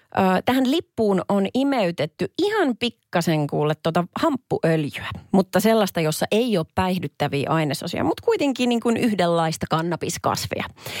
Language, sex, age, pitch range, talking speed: Finnish, female, 30-49, 165-225 Hz, 120 wpm